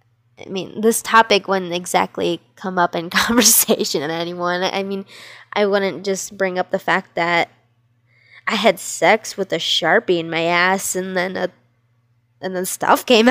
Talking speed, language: 170 wpm, English